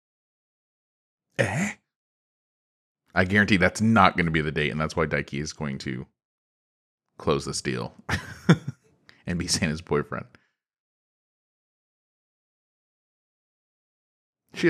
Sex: male